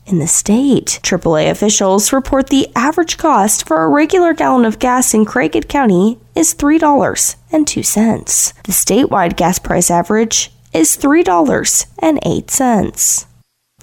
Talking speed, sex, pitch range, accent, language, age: 115 wpm, female, 190-285 Hz, American, English, 10-29